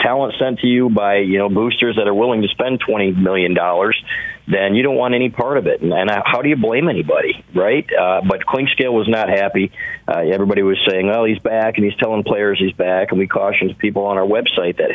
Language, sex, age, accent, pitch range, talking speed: English, male, 40-59, American, 90-110 Hz, 235 wpm